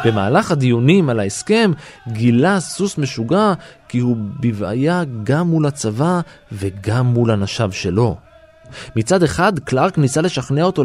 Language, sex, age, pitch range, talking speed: Hebrew, male, 20-39, 115-165 Hz, 125 wpm